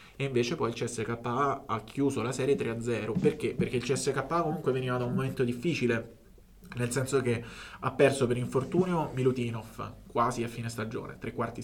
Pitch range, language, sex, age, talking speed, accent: 115-130 Hz, Italian, male, 20-39, 175 wpm, native